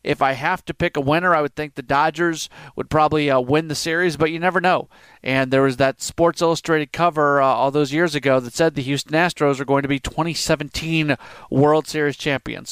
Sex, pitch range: male, 135-175 Hz